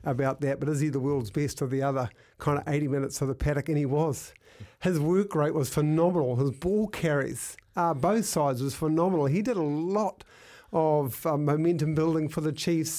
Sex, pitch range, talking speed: male, 140-160 Hz, 210 wpm